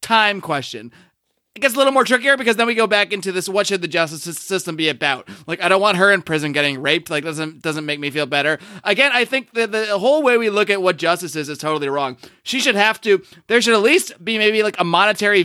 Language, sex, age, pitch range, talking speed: English, male, 30-49, 155-200 Hz, 260 wpm